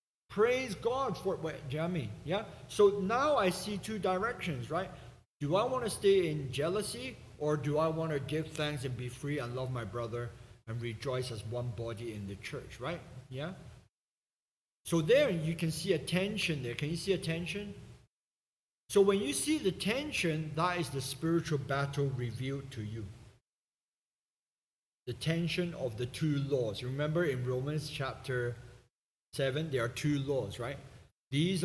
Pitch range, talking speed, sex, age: 130-170 Hz, 165 wpm, male, 50-69